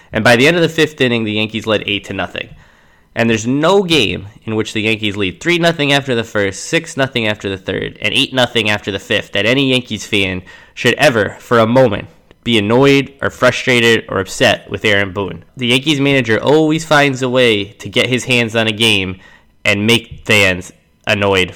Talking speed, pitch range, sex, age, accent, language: 205 wpm, 100-130 Hz, male, 10-29, American, English